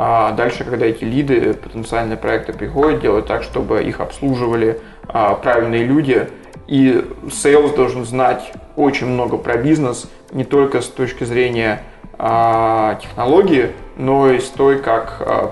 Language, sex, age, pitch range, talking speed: Ukrainian, male, 20-39, 115-140 Hz, 145 wpm